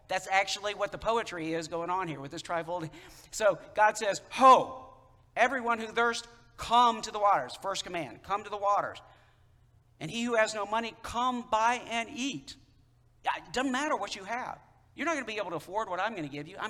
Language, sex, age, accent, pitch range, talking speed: English, male, 50-69, American, 125-175 Hz, 215 wpm